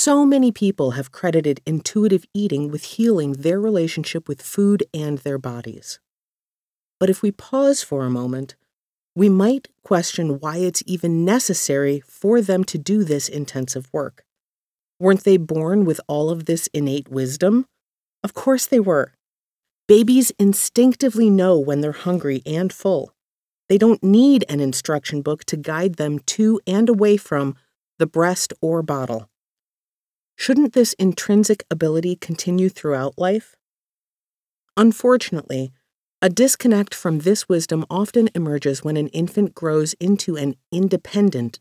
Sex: female